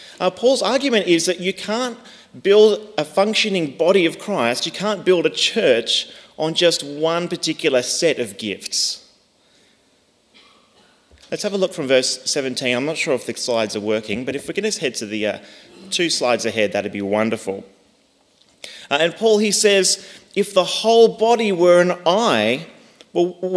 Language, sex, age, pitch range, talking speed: English, male, 30-49, 150-210 Hz, 175 wpm